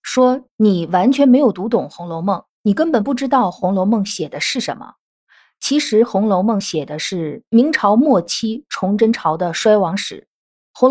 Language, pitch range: Chinese, 190-250 Hz